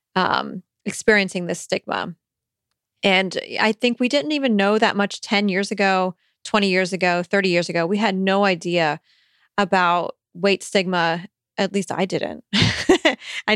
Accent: American